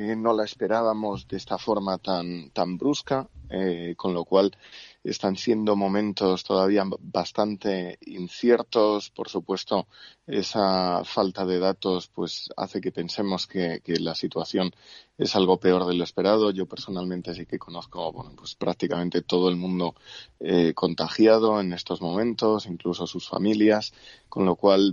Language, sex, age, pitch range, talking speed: Spanish, male, 20-39, 90-100 Hz, 145 wpm